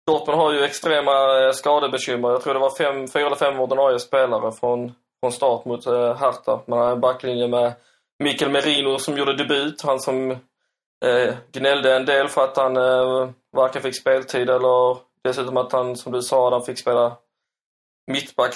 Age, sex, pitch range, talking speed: 20-39, male, 120-140 Hz, 175 wpm